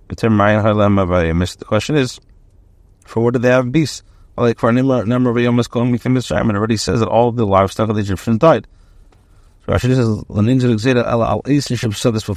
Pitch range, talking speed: 95-115 Hz, 95 wpm